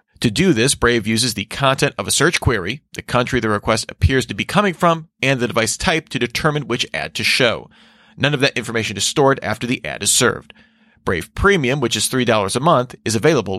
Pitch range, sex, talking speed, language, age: 115-155 Hz, male, 220 wpm, English, 40-59